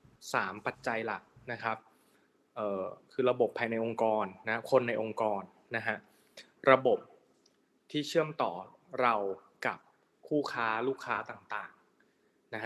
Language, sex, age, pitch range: Thai, male, 20-39, 110-135 Hz